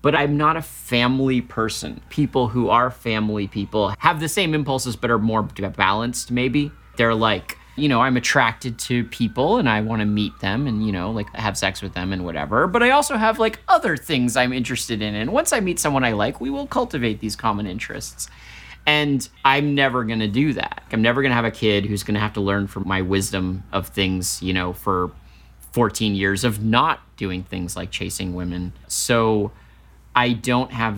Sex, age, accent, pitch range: male, 30-49, American, 100-130 Hz